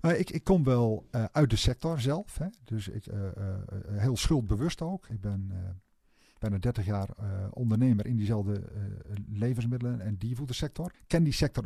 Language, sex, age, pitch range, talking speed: Dutch, male, 50-69, 110-150 Hz, 185 wpm